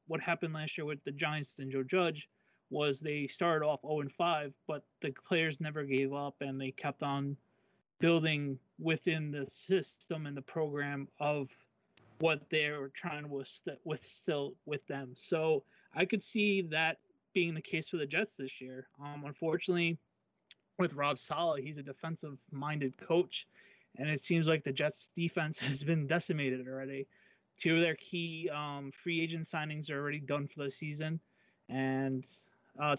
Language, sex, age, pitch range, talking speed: English, male, 20-39, 135-165 Hz, 165 wpm